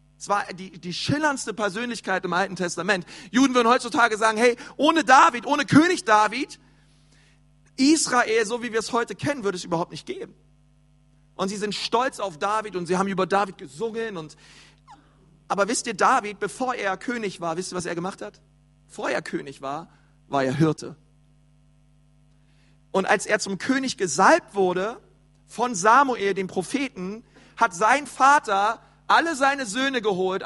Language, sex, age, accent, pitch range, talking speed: German, male, 40-59, German, 150-235 Hz, 165 wpm